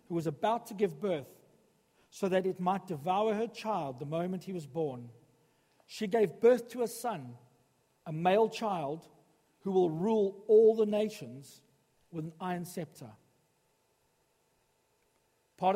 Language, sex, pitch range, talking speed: English, male, 160-210 Hz, 145 wpm